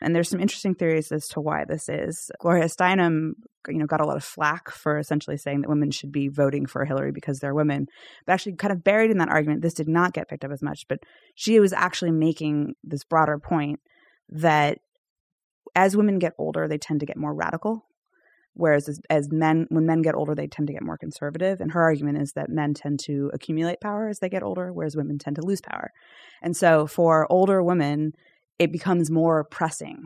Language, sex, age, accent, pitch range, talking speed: English, female, 20-39, American, 145-180 Hz, 220 wpm